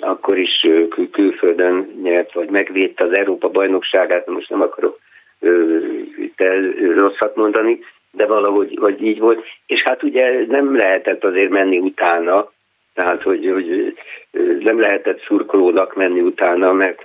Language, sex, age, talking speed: Hungarian, male, 50-69, 135 wpm